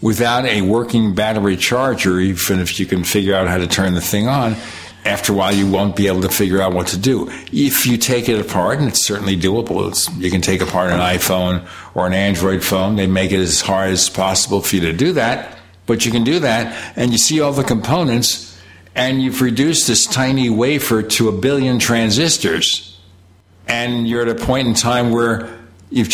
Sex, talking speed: male, 210 wpm